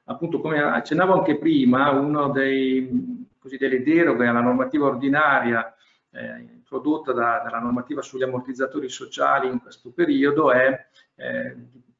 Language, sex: Italian, male